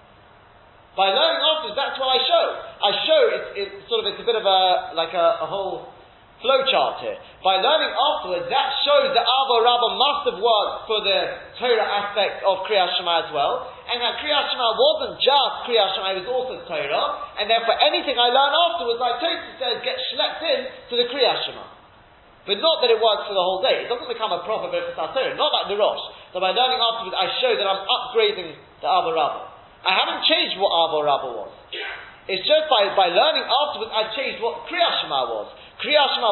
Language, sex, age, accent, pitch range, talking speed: English, male, 30-49, British, 195-320 Hz, 210 wpm